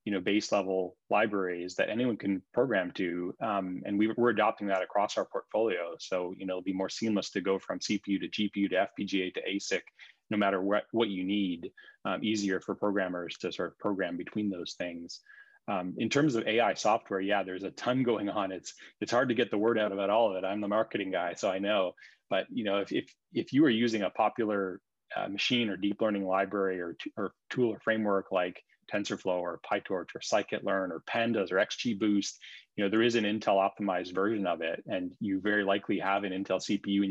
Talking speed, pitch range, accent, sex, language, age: 220 wpm, 95-105 Hz, American, male, English, 30-49